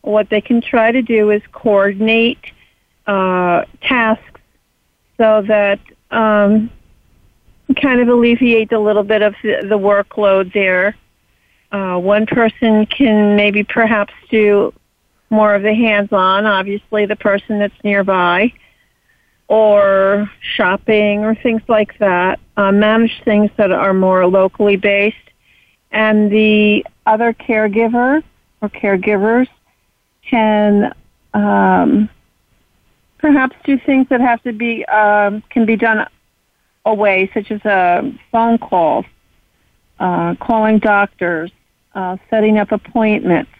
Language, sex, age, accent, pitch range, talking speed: English, female, 50-69, American, 195-225 Hz, 120 wpm